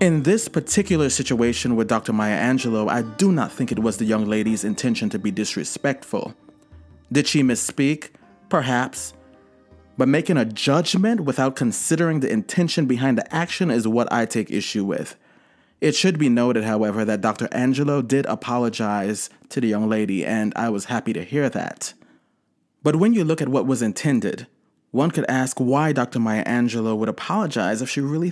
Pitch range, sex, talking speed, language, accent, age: 115-150 Hz, male, 175 wpm, English, American, 30-49